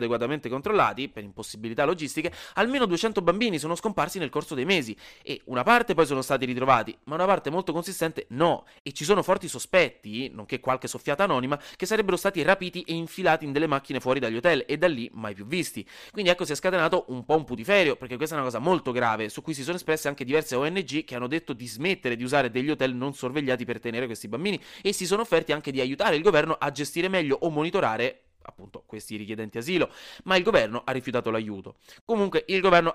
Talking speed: 220 wpm